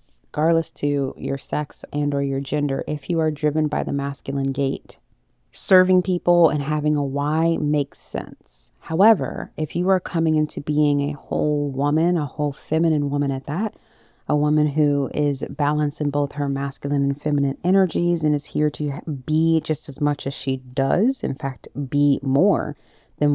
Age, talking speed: 30-49, 170 wpm